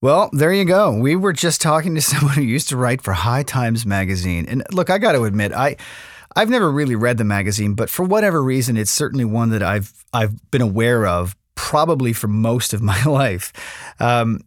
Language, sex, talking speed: English, male, 210 wpm